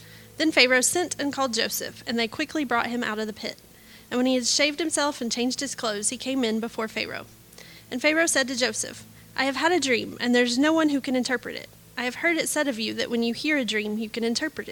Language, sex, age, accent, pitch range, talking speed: English, female, 30-49, American, 225-275 Hz, 265 wpm